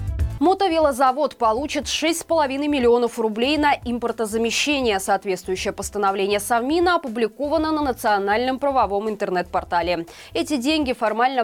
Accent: native